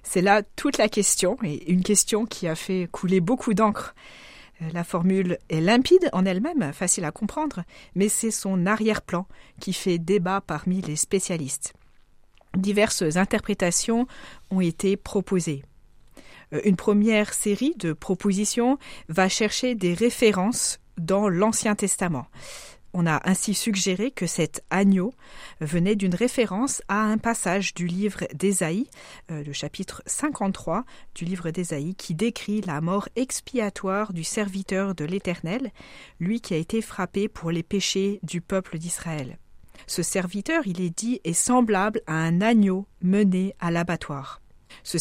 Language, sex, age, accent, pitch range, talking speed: French, female, 40-59, French, 175-220 Hz, 140 wpm